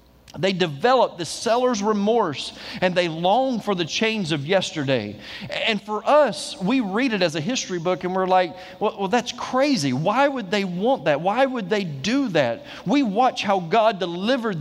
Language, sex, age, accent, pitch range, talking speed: English, male, 40-59, American, 175-225 Hz, 185 wpm